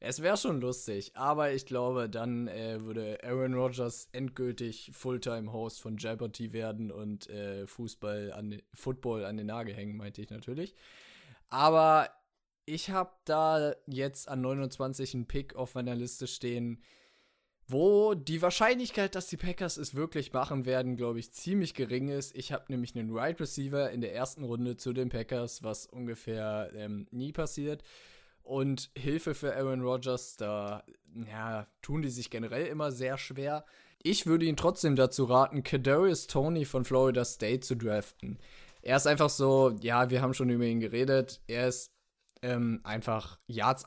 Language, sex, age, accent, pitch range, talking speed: German, male, 20-39, German, 115-135 Hz, 165 wpm